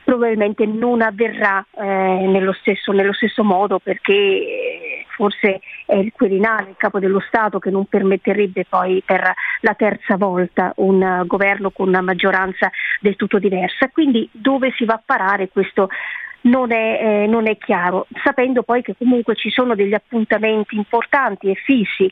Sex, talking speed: female, 160 wpm